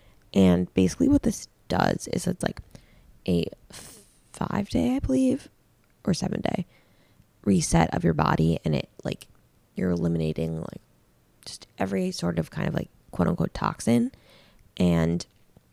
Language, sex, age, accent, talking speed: English, female, 20-39, American, 145 wpm